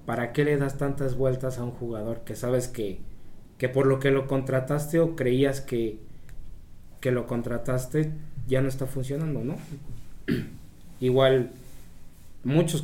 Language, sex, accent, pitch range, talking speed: Spanish, male, Mexican, 115-140 Hz, 145 wpm